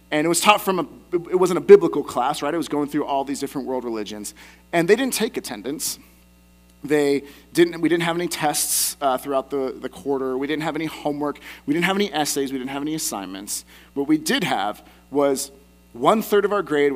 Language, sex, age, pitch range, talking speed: English, male, 30-49, 115-175 Hz, 225 wpm